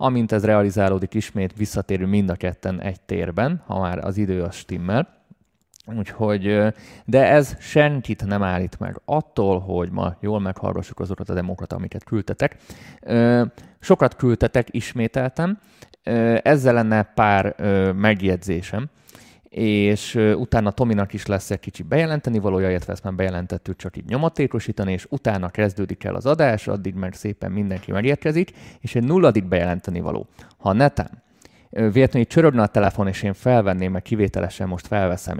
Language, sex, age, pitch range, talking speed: Hungarian, male, 30-49, 95-115 Hz, 140 wpm